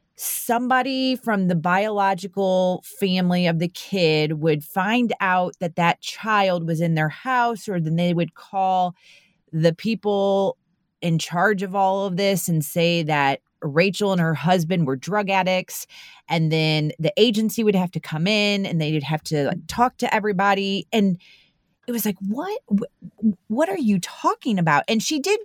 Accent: American